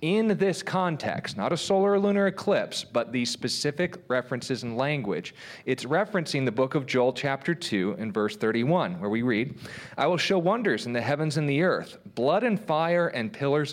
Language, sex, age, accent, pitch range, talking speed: English, male, 40-59, American, 115-160 Hz, 190 wpm